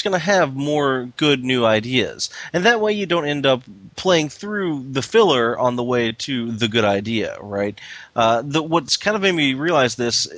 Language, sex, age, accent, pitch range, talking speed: English, male, 30-49, American, 110-140 Hz, 195 wpm